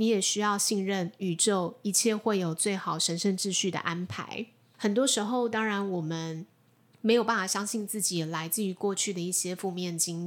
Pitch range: 175-225 Hz